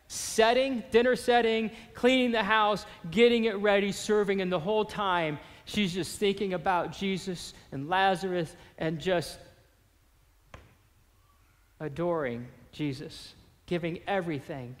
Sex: male